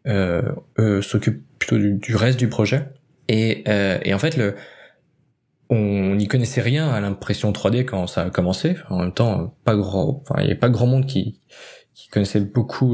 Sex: male